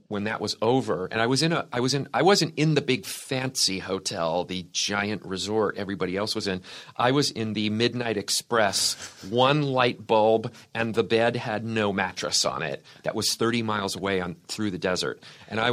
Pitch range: 105-125 Hz